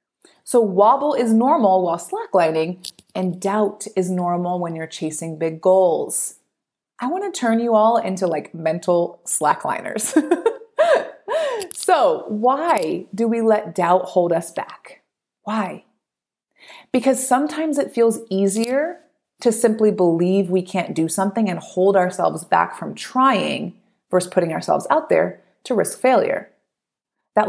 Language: English